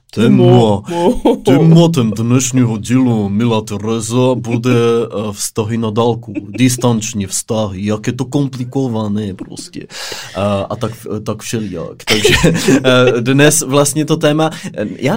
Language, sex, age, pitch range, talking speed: Czech, male, 20-39, 100-130 Hz, 105 wpm